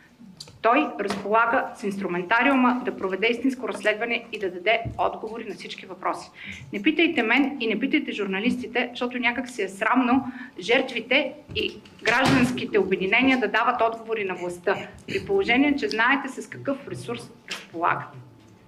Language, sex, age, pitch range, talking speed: Bulgarian, female, 30-49, 200-255 Hz, 140 wpm